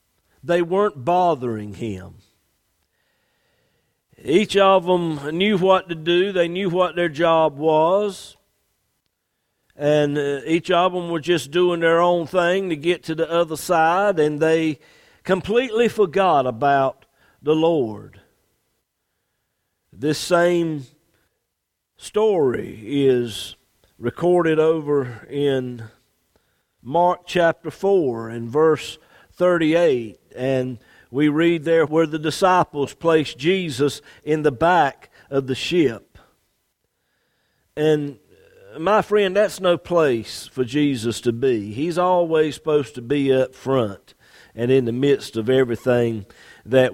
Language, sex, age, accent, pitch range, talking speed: English, male, 50-69, American, 130-175 Hz, 120 wpm